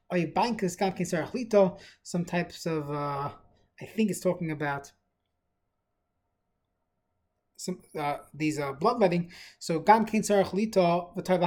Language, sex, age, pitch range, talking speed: English, male, 20-39, 155-195 Hz, 125 wpm